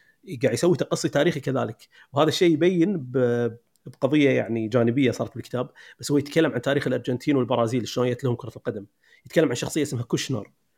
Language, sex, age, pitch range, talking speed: Arabic, male, 30-49, 125-160 Hz, 165 wpm